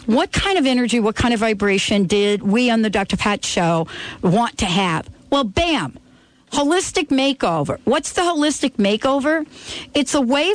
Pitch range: 220-290 Hz